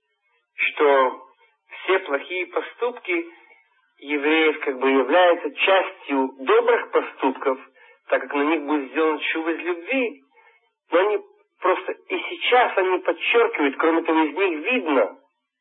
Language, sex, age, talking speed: Russian, male, 50-69, 125 wpm